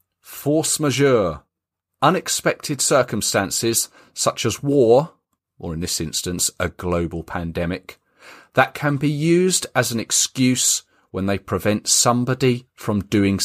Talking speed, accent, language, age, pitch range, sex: 120 wpm, British, English, 40-59, 100-145 Hz, male